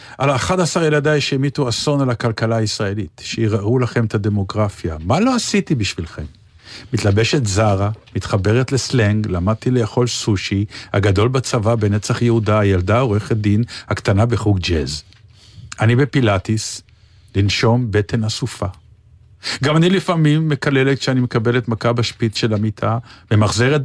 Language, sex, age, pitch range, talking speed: Hebrew, male, 50-69, 100-130 Hz, 125 wpm